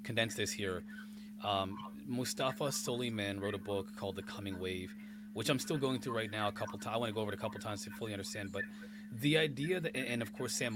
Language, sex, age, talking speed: English, male, 30-49, 250 wpm